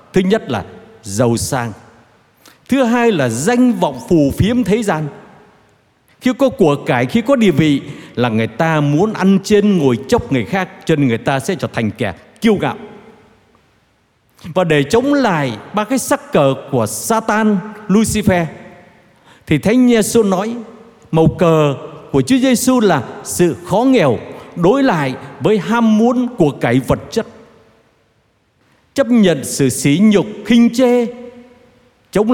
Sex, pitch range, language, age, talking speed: male, 145-220 Hz, Vietnamese, 60-79, 150 wpm